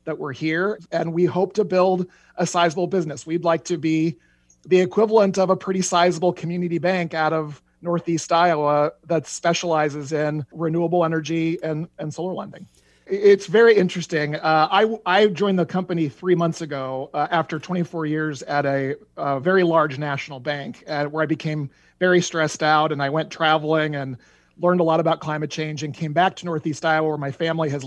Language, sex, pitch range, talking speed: English, male, 150-180 Hz, 185 wpm